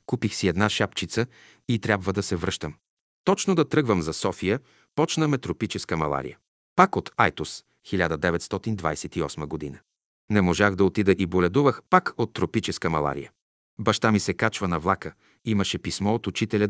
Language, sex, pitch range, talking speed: Bulgarian, male, 95-120 Hz, 155 wpm